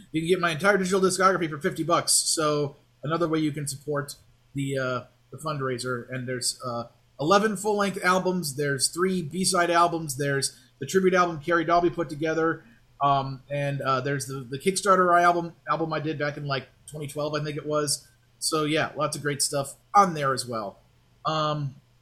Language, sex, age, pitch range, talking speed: English, male, 30-49, 135-175 Hz, 185 wpm